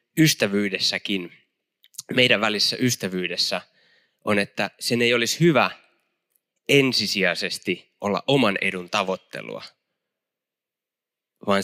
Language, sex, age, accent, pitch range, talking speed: Finnish, male, 20-39, native, 100-135 Hz, 80 wpm